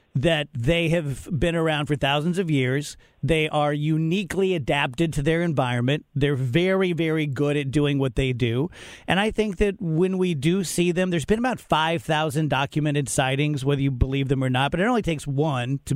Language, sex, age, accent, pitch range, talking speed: English, male, 40-59, American, 145-175 Hz, 195 wpm